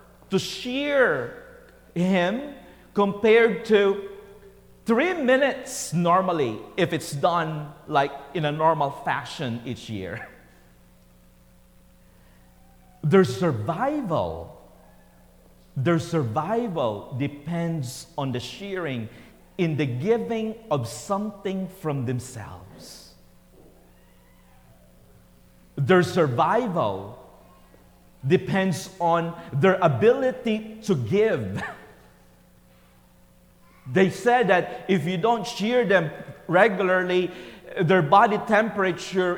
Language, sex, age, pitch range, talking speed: English, male, 40-59, 130-200 Hz, 80 wpm